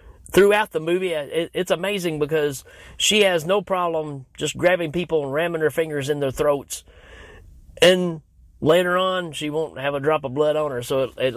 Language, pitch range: English, 120-160 Hz